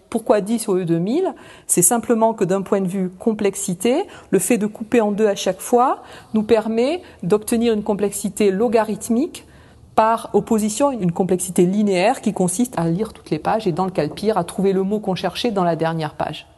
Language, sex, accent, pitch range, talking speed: French, female, French, 180-230 Hz, 200 wpm